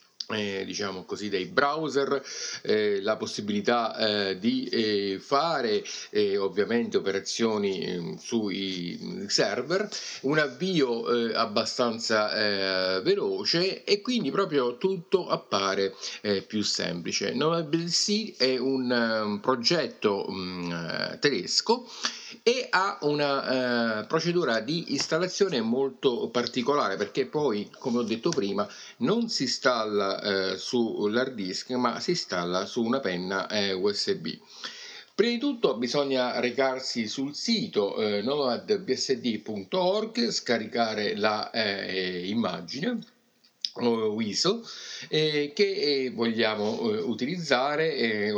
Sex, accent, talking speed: male, native, 105 wpm